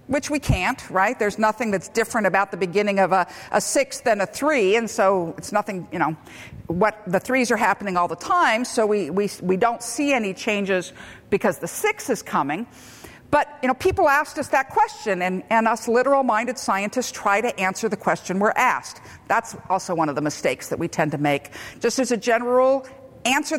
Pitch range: 200-275 Hz